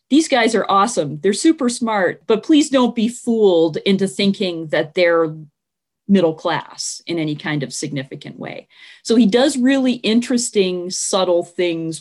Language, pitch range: English, 160-215 Hz